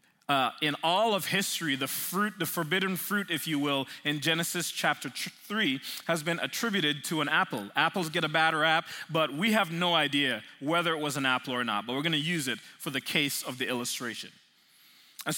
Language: English